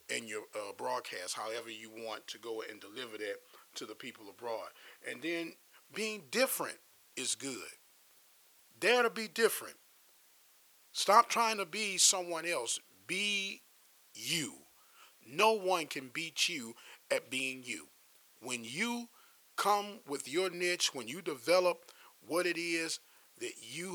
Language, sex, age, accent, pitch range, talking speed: English, male, 40-59, American, 140-205 Hz, 140 wpm